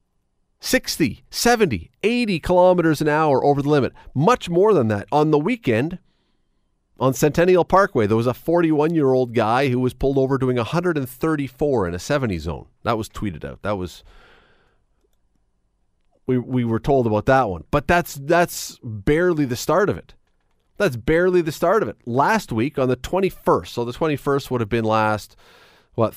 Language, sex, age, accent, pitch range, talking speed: English, male, 40-59, American, 120-170 Hz, 170 wpm